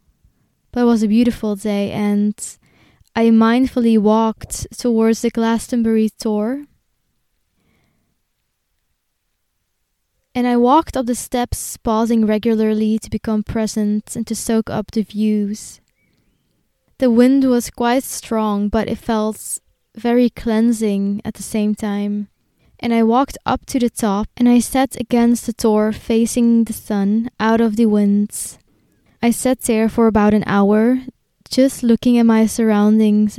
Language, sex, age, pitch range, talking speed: English, female, 20-39, 215-240 Hz, 140 wpm